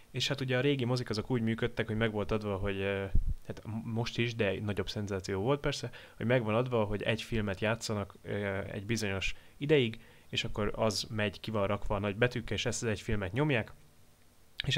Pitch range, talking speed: 100-125 Hz, 205 wpm